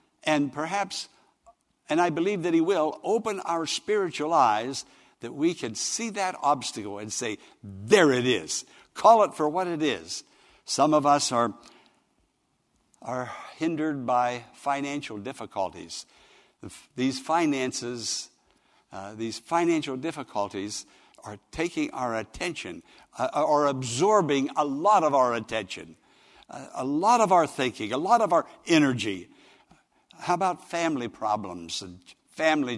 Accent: American